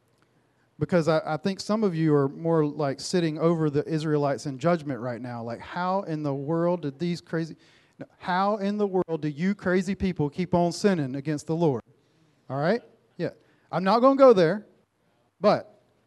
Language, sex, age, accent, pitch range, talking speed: English, male, 40-59, American, 130-180 Hz, 185 wpm